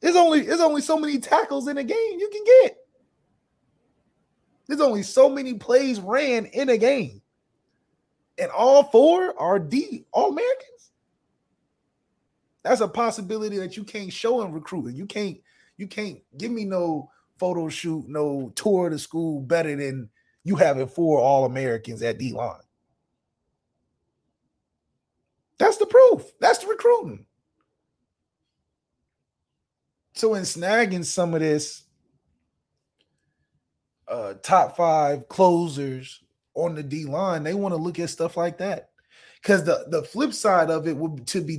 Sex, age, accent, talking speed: male, 20-39, American, 145 wpm